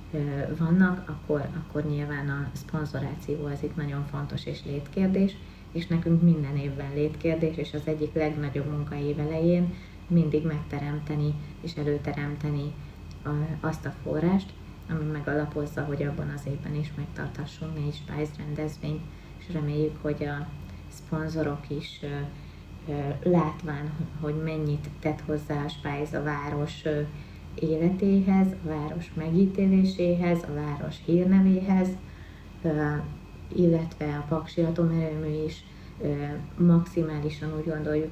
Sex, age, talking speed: female, 30-49, 115 wpm